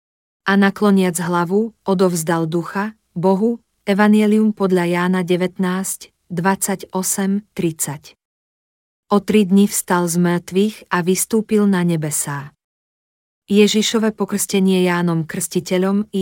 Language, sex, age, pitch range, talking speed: Slovak, female, 40-59, 175-200 Hz, 95 wpm